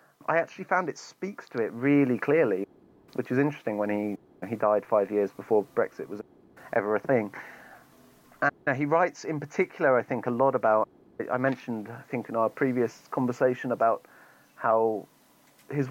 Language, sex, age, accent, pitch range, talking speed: English, male, 30-49, British, 110-130 Hz, 170 wpm